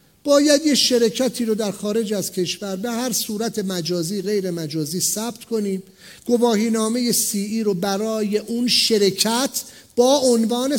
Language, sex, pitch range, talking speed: English, male, 195-285 Hz, 145 wpm